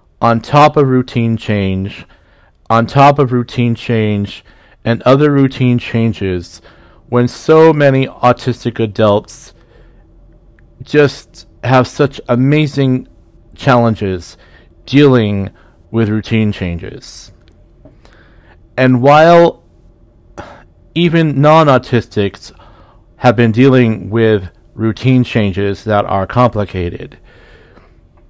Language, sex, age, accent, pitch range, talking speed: English, male, 40-59, American, 95-125 Hz, 85 wpm